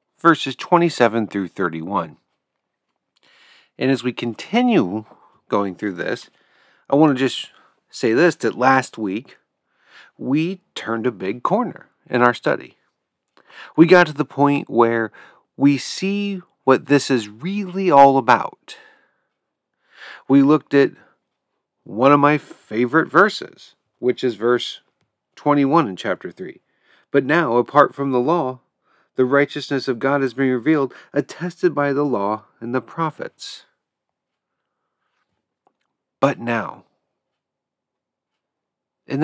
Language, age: English, 40-59